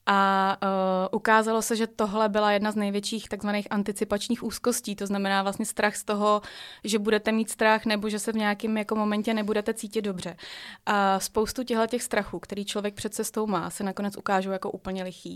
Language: Czech